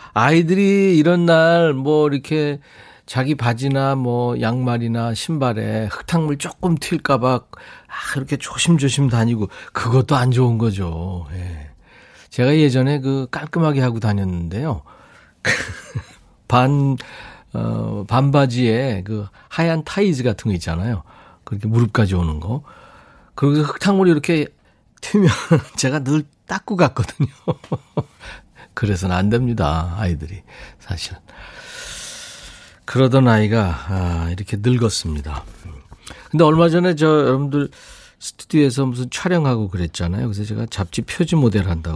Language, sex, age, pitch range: Korean, male, 40-59, 100-145 Hz